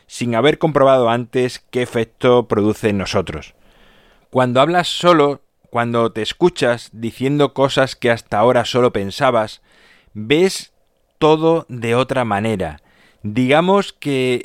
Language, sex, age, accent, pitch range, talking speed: Spanish, male, 30-49, Spanish, 110-140 Hz, 120 wpm